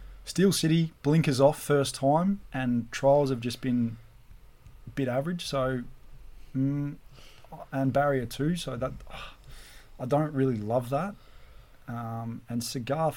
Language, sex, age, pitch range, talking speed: English, male, 20-39, 115-135 Hz, 130 wpm